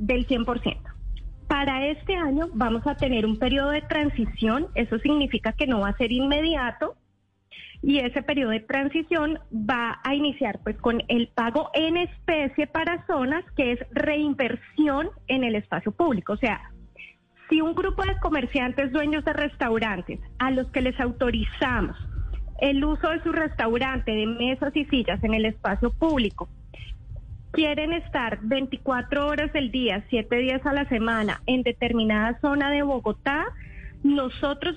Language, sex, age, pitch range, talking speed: Spanish, female, 20-39, 240-300 Hz, 150 wpm